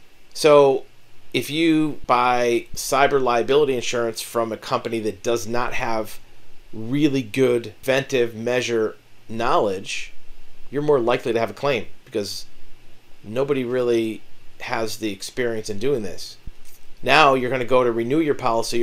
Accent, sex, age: American, male, 40-59